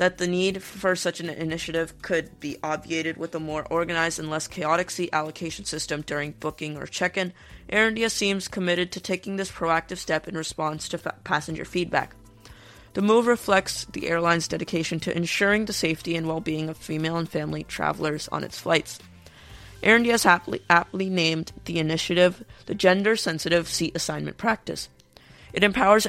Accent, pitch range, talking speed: American, 155-185 Hz, 175 wpm